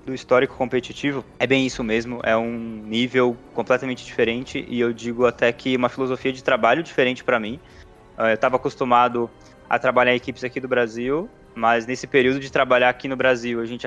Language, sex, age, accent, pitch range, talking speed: Portuguese, male, 20-39, Brazilian, 120-135 Hz, 190 wpm